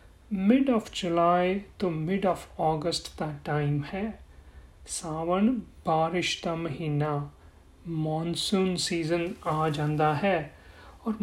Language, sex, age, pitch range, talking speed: Punjabi, male, 30-49, 170-230 Hz, 105 wpm